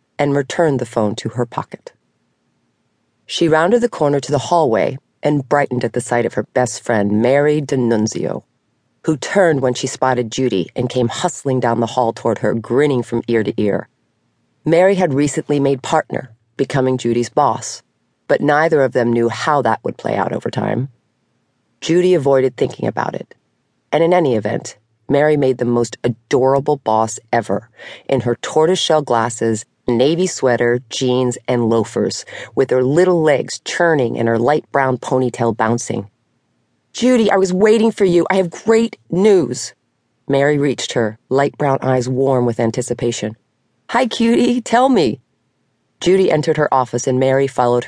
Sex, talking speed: female, 165 wpm